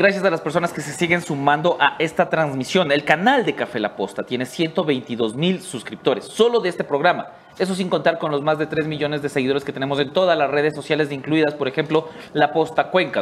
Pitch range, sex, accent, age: 150-190 Hz, male, Mexican, 30-49